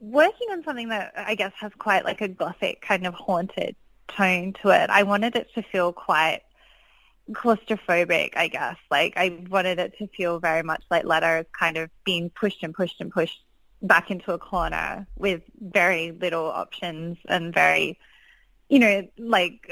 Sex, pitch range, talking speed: female, 170-210 Hz, 175 wpm